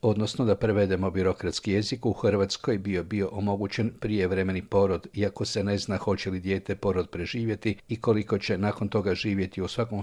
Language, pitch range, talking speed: Croatian, 95-110 Hz, 175 wpm